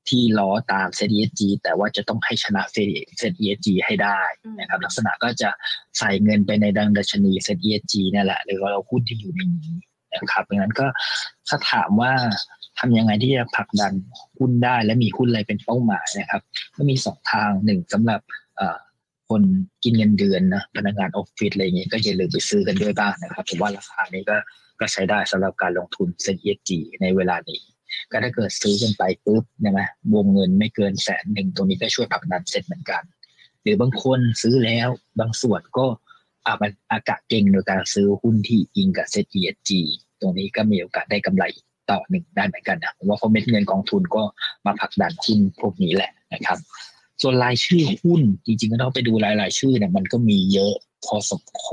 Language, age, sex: Thai, 20-39, male